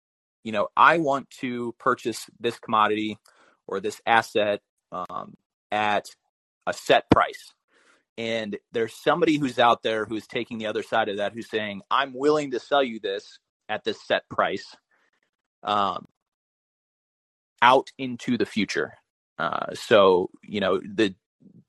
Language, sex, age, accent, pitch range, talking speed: English, male, 30-49, American, 100-130 Hz, 140 wpm